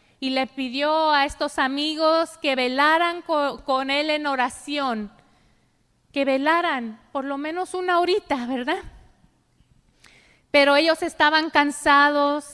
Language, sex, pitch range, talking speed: Spanish, female, 260-315 Hz, 115 wpm